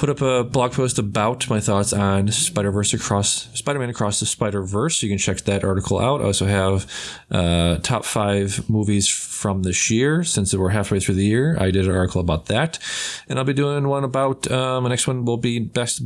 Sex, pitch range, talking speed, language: male, 100-125 Hz, 210 wpm, English